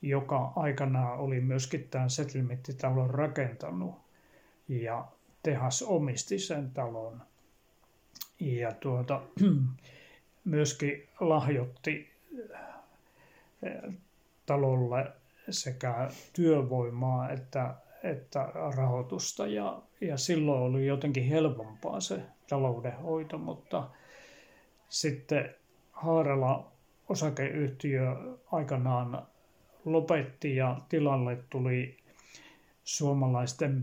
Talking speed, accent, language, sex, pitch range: 70 wpm, native, Finnish, male, 125-155 Hz